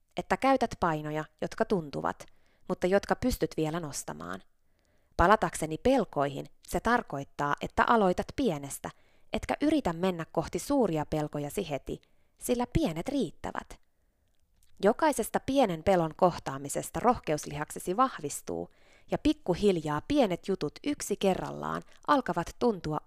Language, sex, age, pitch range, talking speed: Finnish, female, 20-39, 155-220 Hz, 105 wpm